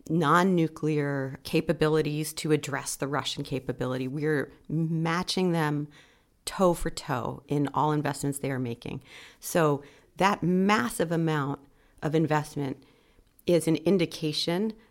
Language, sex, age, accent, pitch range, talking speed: English, female, 40-59, American, 150-180 Hz, 115 wpm